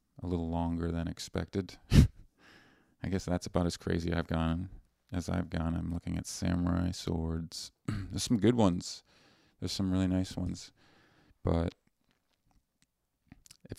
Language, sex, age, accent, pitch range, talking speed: English, male, 40-59, American, 85-95 Hz, 140 wpm